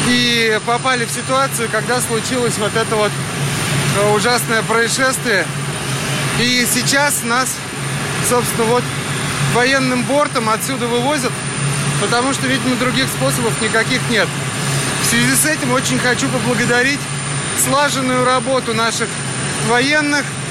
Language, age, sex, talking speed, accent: Russian, 20-39, male, 110 wpm, native